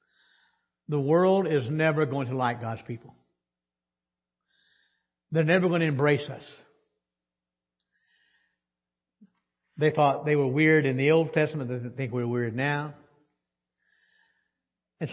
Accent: American